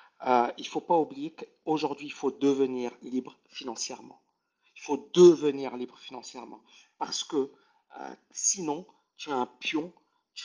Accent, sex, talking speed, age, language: French, male, 150 wpm, 60-79, French